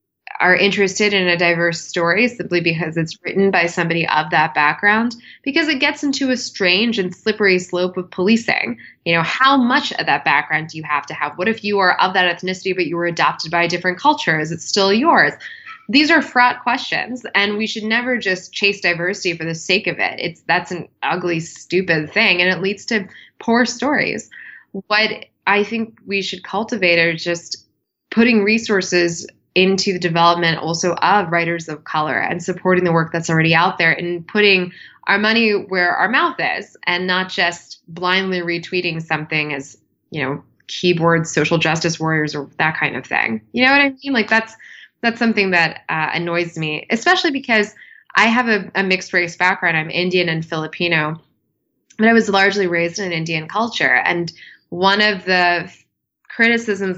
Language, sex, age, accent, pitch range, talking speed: English, female, 20-39, American, 170-215 Hz, 185 wpm